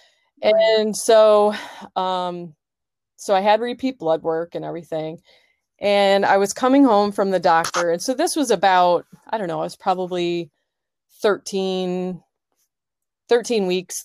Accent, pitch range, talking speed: American, 175-215 Hz, 140 wpm